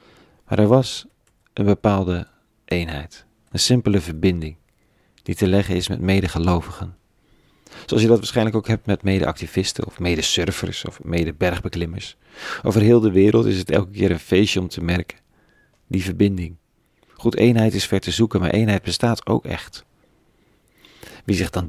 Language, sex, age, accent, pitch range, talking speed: Dutch, male, 40-59, Dutch, 85-105 Hz, 155 wpm